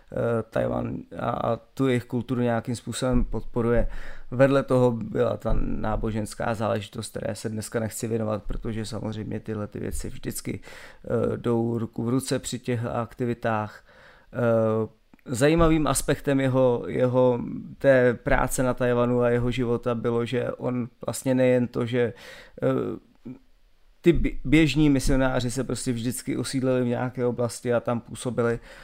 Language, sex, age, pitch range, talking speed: Czech, male, 30-49, 115-130 Hz, 130 wpm